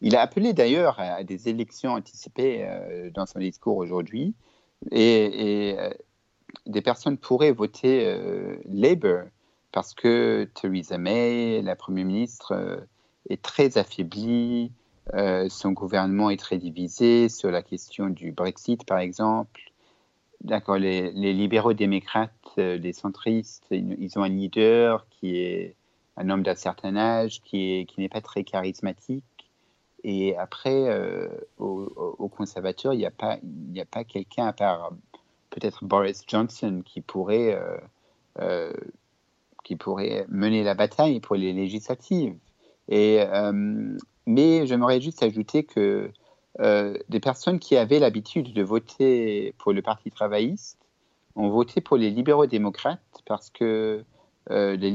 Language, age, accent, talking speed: French, 50-69, French, 135 wpm